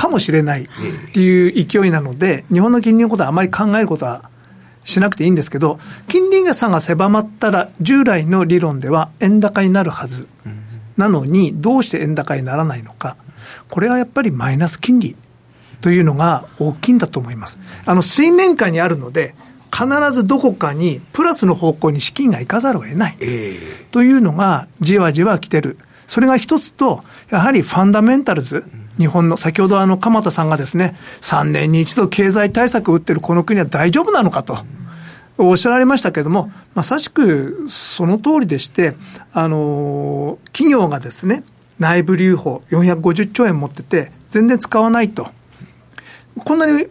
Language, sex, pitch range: Japanese, male, 150-210 Hz